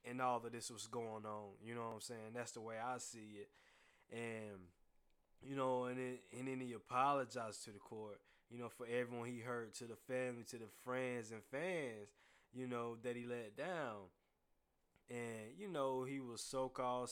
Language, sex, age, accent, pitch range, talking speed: English, male, 20-39, American, 110-125 Hz, 195 wpm